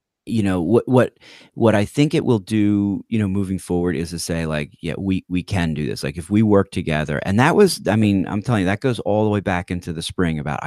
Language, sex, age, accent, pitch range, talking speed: English, male, 30-49, American, 80-100 Hz, 265 wpm